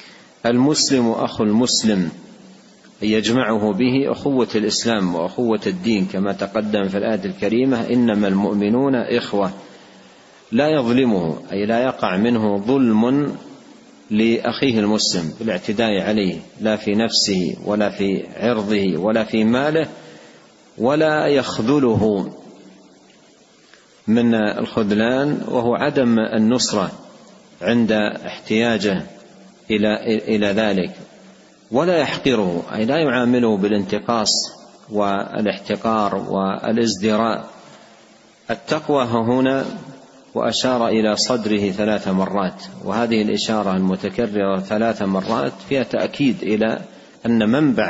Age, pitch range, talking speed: 40-59, 105-120 Hz, 95 wpm